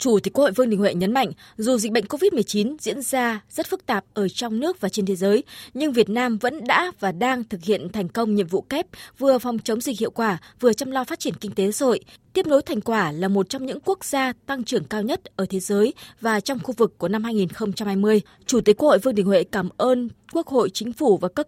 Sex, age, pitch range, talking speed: female, 20-39, 200-265 Hz, 255 wpm